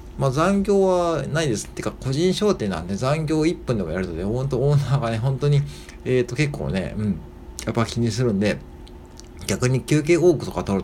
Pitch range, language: 95-135 Hz, Japanese